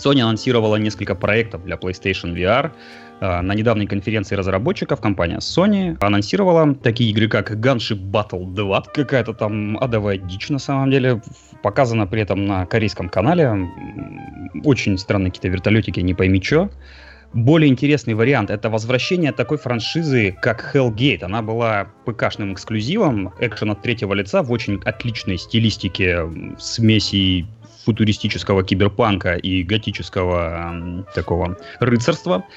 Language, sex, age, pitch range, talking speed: Russian, male, 20-39, 95-125 Hz, 130 wpm